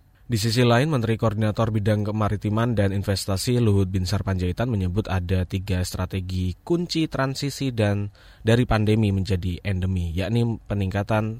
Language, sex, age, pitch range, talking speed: Indonesian, male, 20-39, 95-120 Hz, 130 wpm